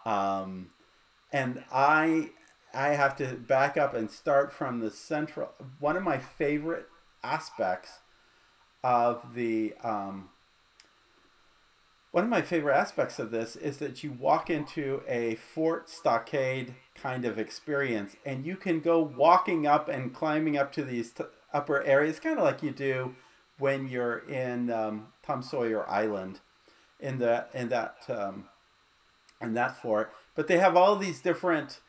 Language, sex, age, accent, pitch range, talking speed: English, male, 40-59, American, 115-150 Hz, 150 wpm